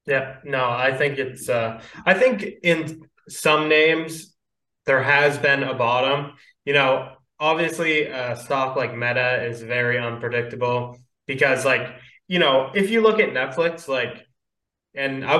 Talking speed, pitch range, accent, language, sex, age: 150 wpm, 125-150 Hz, American, English, male, 20-39